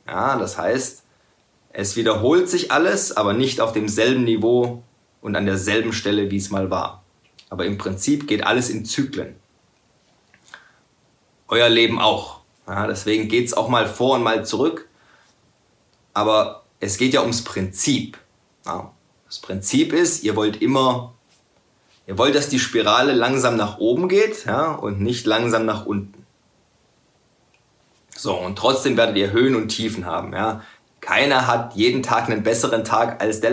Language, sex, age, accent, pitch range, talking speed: German, male, 30-49, German, 105-130 Hz, 150 wpm